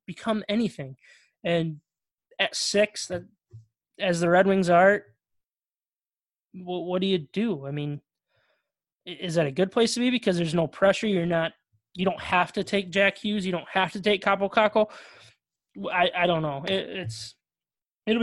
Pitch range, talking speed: 165-200 Hz, 160 wpm